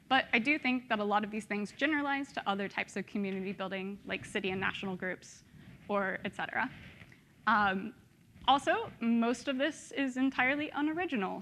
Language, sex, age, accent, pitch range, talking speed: English, female, 20-39, American, 200-265 Hz, 175 wpm